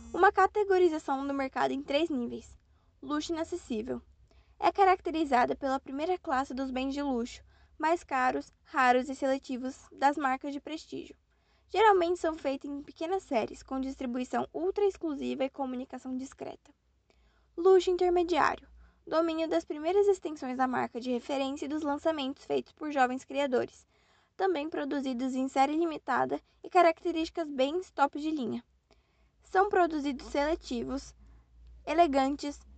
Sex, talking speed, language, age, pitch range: female, 130 wpm, German, 10-29, 260-330 Hz